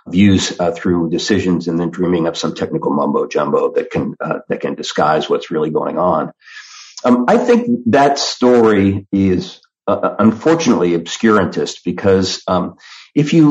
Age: 40-59